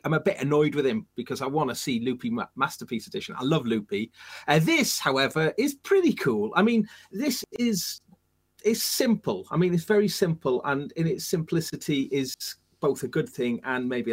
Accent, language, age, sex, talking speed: British, English, 30-49, male, 190 wpm